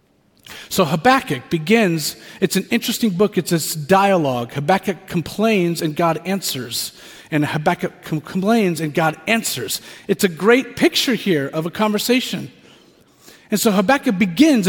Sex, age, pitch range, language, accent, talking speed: male, 40-59, 170-235 Hz, English, American, 135 wpm